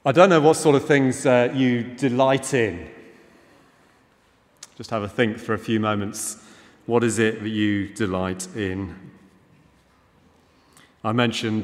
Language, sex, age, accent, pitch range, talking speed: English, male, 40-59, British, 110-130 Hz, 145 wpm